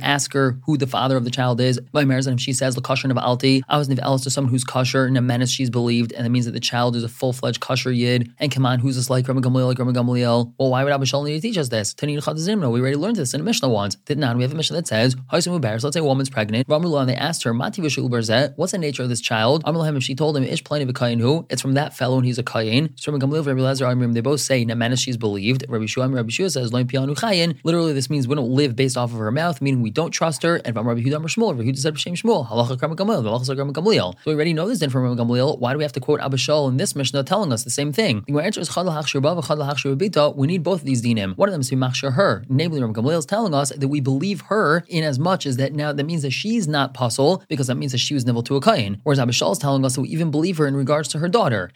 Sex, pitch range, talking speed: male, 125-150 Hz, 240 wpm